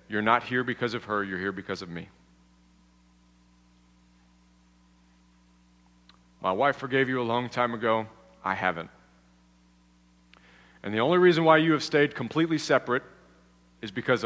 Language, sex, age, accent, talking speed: English, male, 40-59, American, 140 wpm